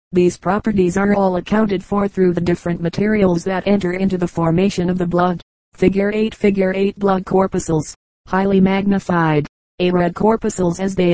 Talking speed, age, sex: 165 wpm, 30-49, female